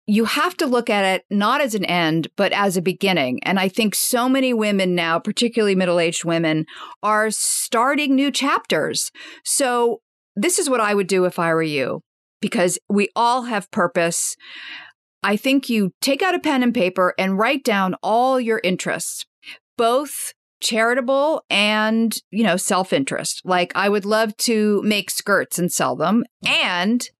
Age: 50-69